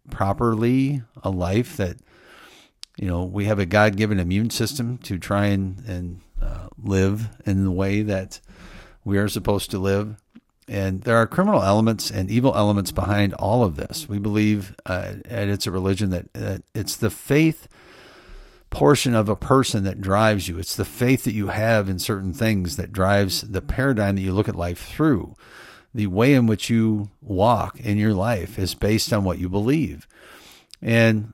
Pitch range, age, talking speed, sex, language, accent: 95-115 Hz, 50-69, 180 wpm, male, English, American